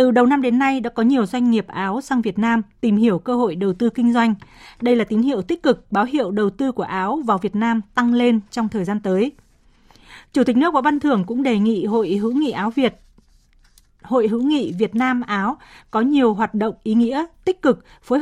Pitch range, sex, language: 220-265 Hz, female, Vietnamese